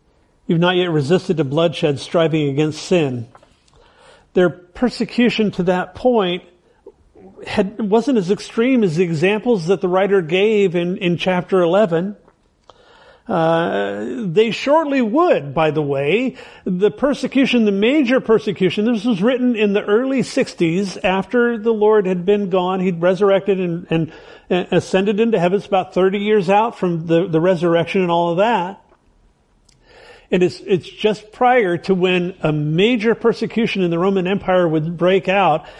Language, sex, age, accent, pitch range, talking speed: English, male, 50-69, American, 180-230 Hz, 155 wpm